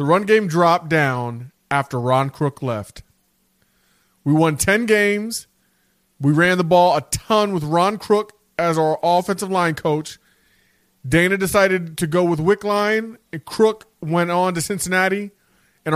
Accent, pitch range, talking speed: American, 155-200 Hz, 150 wpm